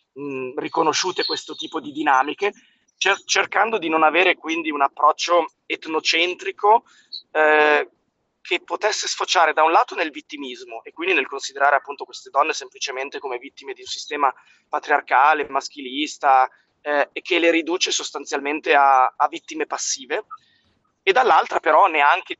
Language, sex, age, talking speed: Italian, male, 20-39, 135 wpm